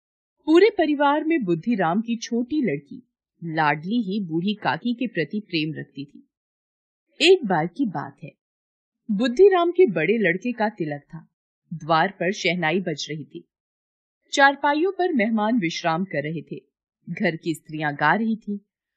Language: Hindi